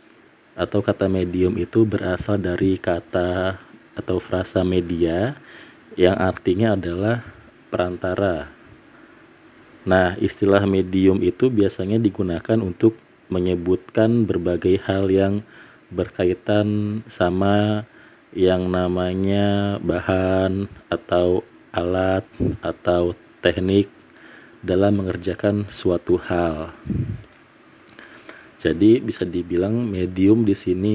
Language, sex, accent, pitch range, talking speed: Indonesian, male, native, 90-105 Hz, 85 wpm